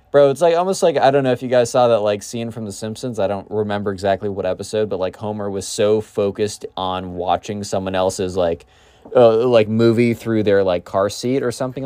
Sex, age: male, 20-39